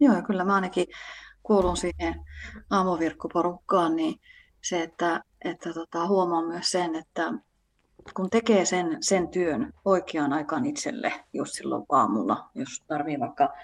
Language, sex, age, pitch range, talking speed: Finnish, female, 30-49, 175-240 Hz, 135 wpm